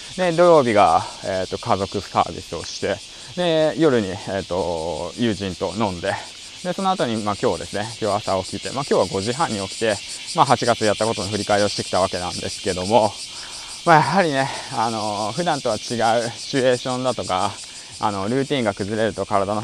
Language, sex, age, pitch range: Japanese, male, 20-39, 100-130 Hz